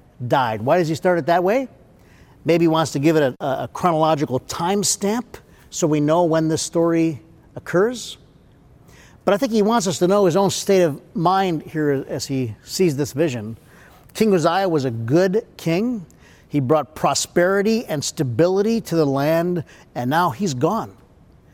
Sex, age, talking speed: male, 50-69, 175 wpm